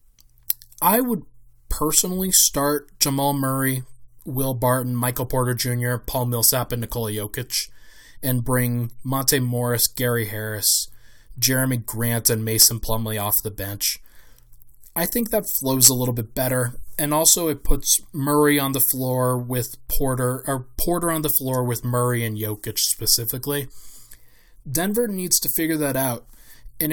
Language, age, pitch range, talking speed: English, 20-39, 120-150 Hz, 145 wpm